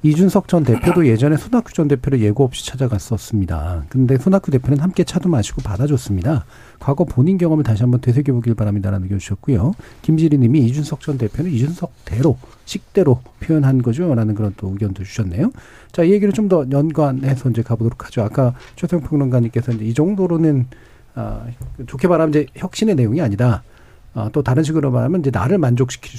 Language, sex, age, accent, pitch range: Korean, male, 40-59, native, 115-160 Hz